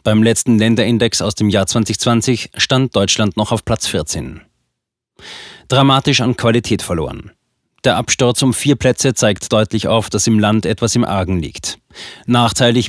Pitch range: 100-120 Hz